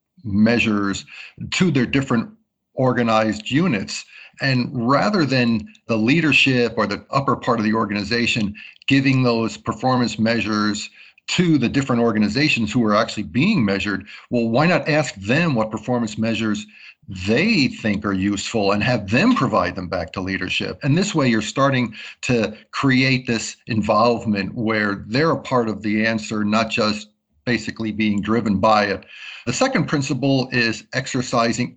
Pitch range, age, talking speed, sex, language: 110-135 Hz, 50-69, 150 wpm, male, English